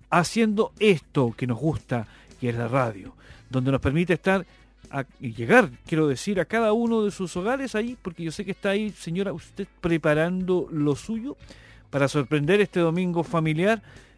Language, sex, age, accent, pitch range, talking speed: Spanish, male, 40-59, Argentinian, 130-165 Hz, 170 wpm